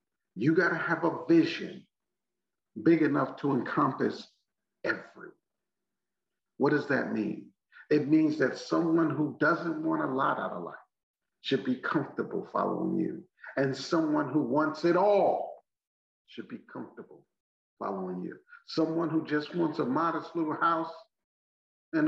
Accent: American